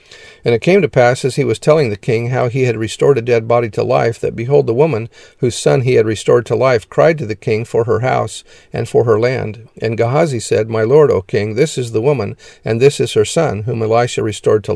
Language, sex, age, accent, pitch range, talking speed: English, male, 50-69, American, 115-145 Hz, 250 wpm